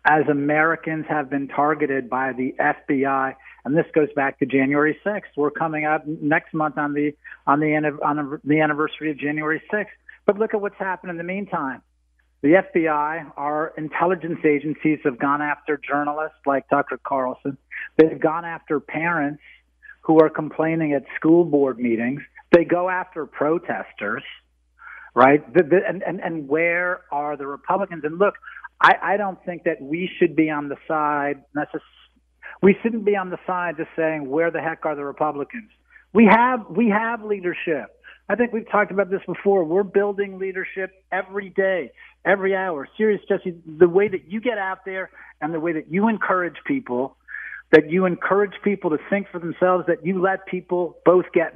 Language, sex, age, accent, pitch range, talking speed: English, male, 50-69, American, 150-190 Hz, 180 wpm